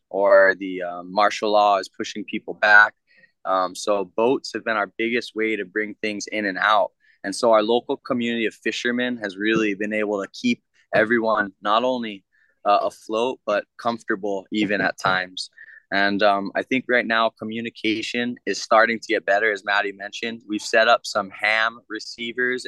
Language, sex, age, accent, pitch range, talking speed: English, male, 20-39, American, 105-120 Hz, 175 wpm